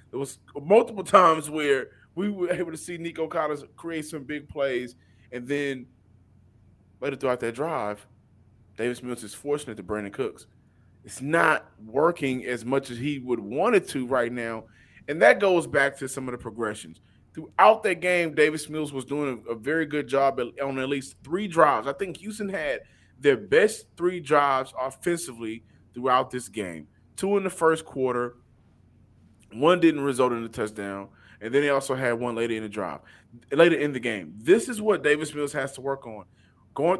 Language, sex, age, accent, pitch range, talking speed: English, male, 20-39, American, 120-175 Hz, 185 wpm